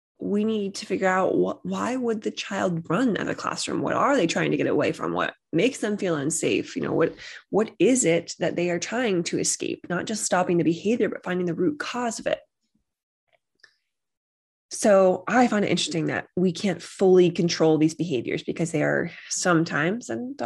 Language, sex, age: English, female, 20-39